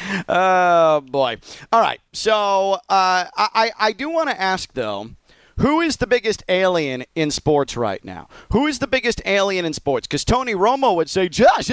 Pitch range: 165-215 Hz